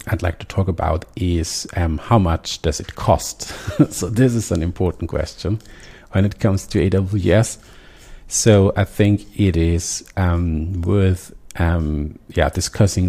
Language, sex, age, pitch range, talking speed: English, male, 50-69, 85-105 Hz, 150 wpm